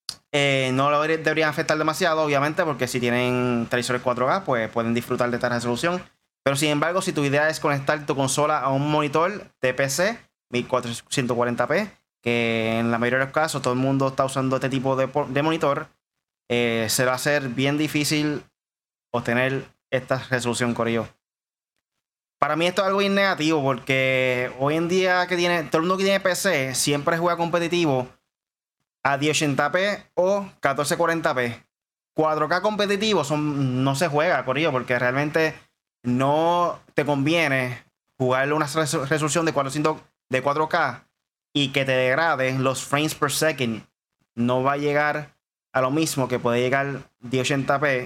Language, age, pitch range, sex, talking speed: Spanish, 20-39, 130-155 Hz, male, 155 wpm